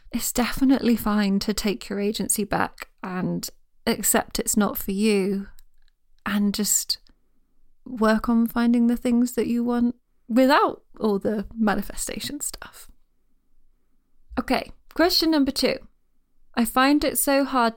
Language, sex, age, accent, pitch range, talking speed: English, female, 20-39, British, 205-245 Hz, 130 wpm